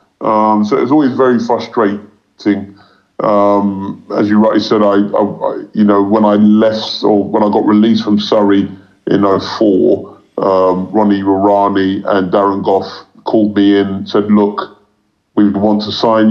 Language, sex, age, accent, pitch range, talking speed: English, female, 30-49, British, 105-115 Hz, 160 wpm